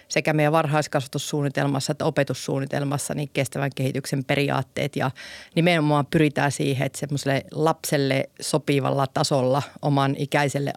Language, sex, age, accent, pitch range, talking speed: Finnish, female, 40-59, native, 140-155 Hz, 105 wpm